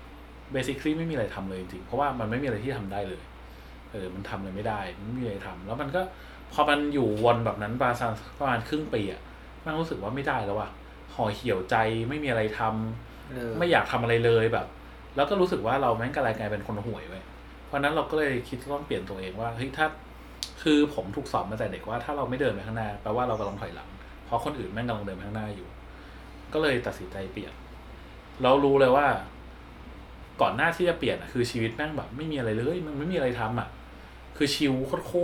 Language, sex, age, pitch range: Thai, male, 20-39, 95-140 Hz